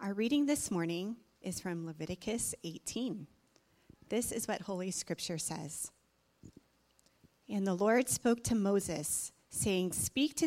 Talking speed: 130 wpm